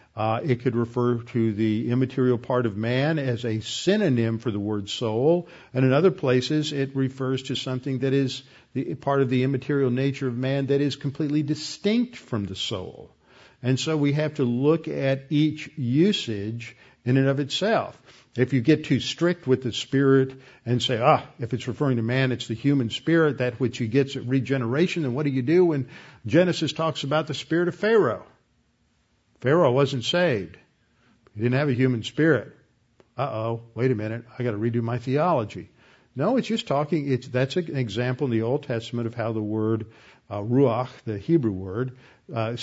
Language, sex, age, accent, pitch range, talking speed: English, male, 50-69, American, 115-145 Hz, 190 wpm